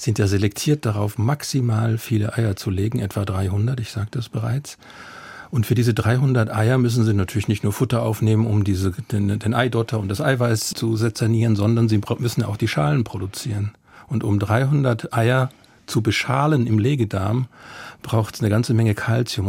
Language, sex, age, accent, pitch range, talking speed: German, male, 50-69, German, 110-125 Hz, 180 wpm